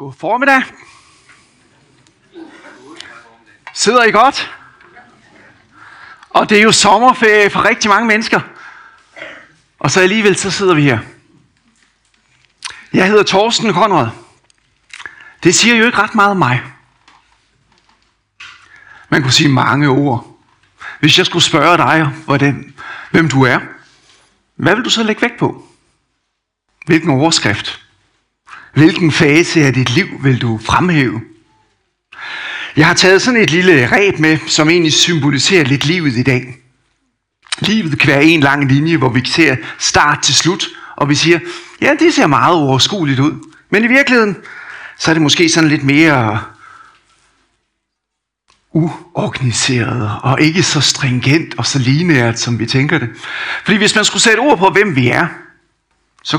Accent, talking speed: native, 140 wpm